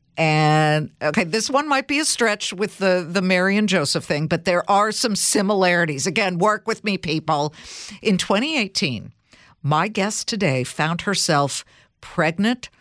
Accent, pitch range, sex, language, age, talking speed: American, 155-220 Hz, female, English, 60-79, 155 wpm